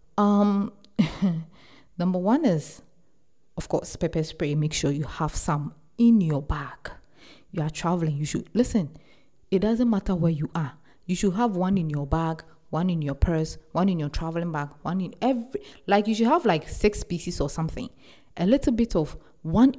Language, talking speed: English, 185 wpm